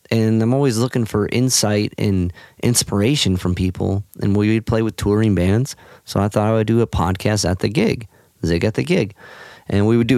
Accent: American